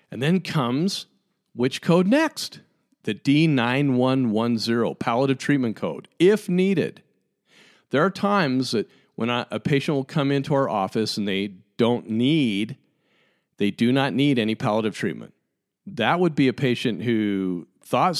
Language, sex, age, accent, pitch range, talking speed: English, male, 50-69, American, 110-140 Hz, 140 wpm